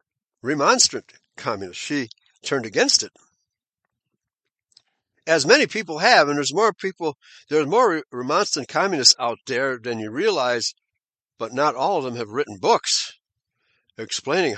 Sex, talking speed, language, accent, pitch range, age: male, 130 wpm, English, American, 120-160 Hz, 60-79